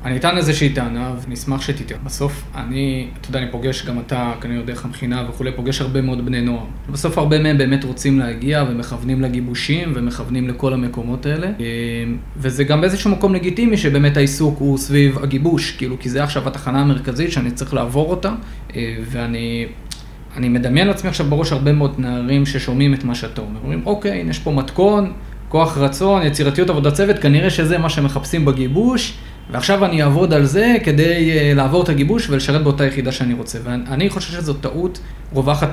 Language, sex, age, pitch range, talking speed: Hebrew, male, 20-39, 125-150 Hz, 155 wpm